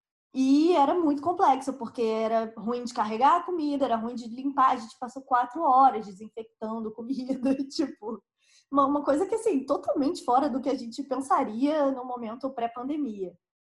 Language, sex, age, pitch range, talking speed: Portuguese, female, 20-39, 215-265 Hz, 160 wpm